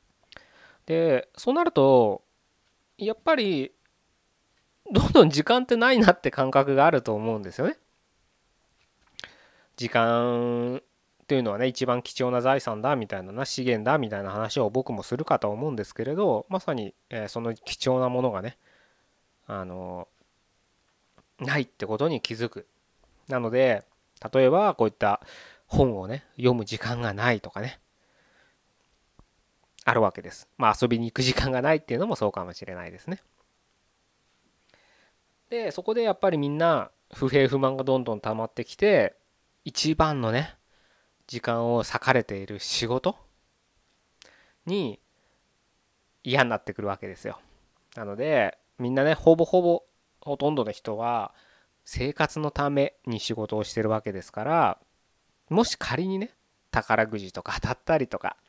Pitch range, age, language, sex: 110-145 Hz, 20-39, Japanese, male